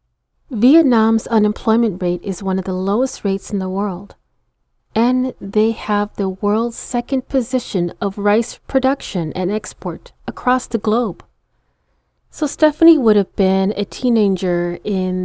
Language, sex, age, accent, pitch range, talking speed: English, female, 30-49, American, 185-230 Hz, 140 wpm